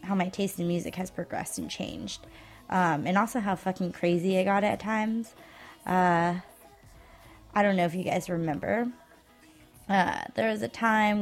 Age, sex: 20-39, female